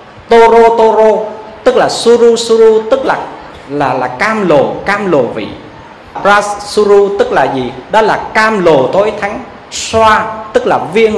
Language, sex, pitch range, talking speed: Vietnamese, male, 145-225 Hz, 160 wpm